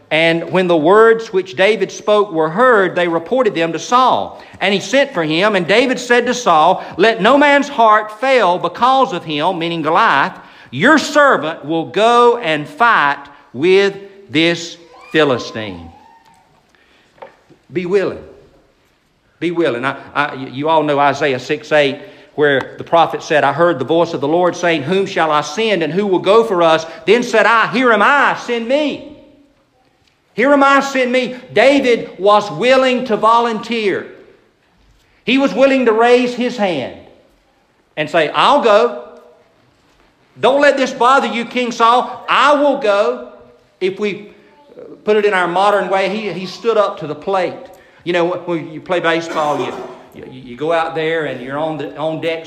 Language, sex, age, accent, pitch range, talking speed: English, male, 50-69, American, 155-235 Hz, 170 wpm